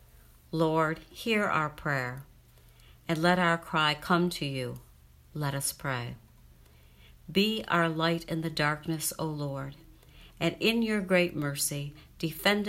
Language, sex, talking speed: English, female, 130 wpm